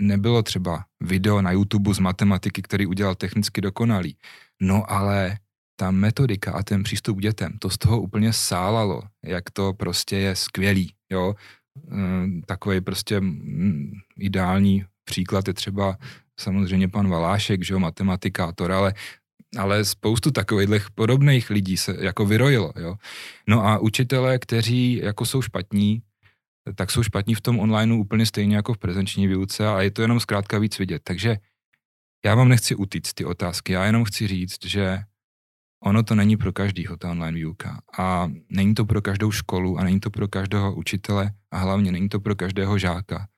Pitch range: 95-110 Hz